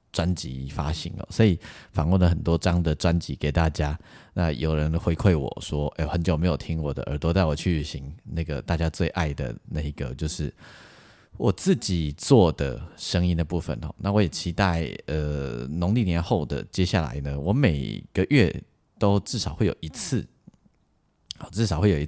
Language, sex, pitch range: Chinese, male, 75-95 Hz